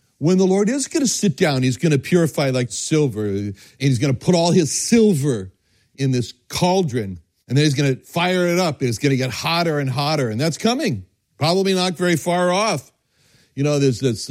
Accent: American